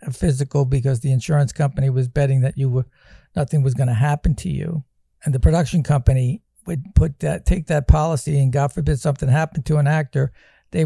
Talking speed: 205 wpm